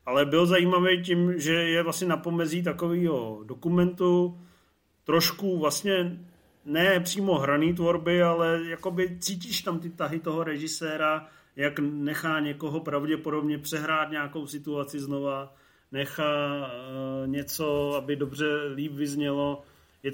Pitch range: 145-170 Hz